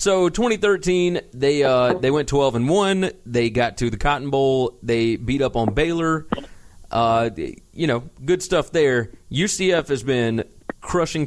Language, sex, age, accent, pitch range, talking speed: English, male, 30-49, American, 110-165 Hz, 160 wpm